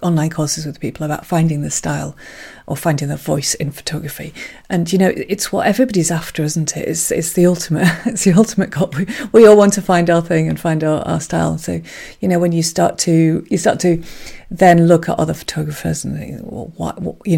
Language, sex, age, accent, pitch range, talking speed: English, female, 40-59, British, 150-175 Hz, 215 wpm